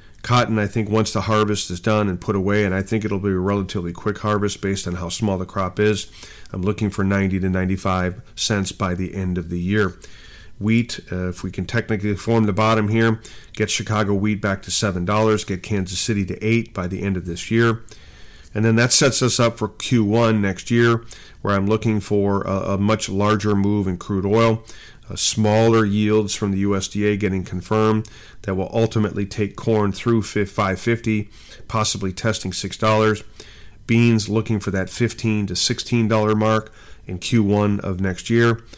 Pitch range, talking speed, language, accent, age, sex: 95-110 Hz, 185 wpm, English, American, 40-59, male